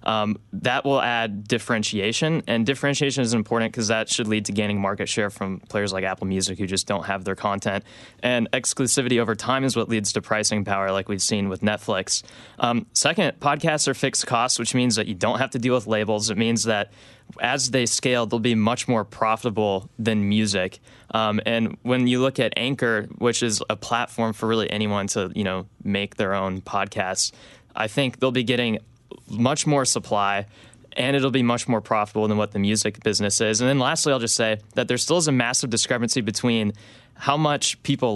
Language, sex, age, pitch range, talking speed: English, male, 20-39, 105-125 Hz, 205 wpm